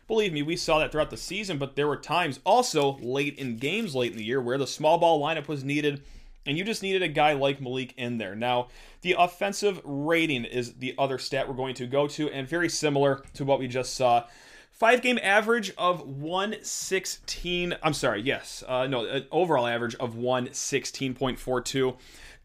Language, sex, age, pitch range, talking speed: English, male, 30-49, 130-190 Hz, 190 wpm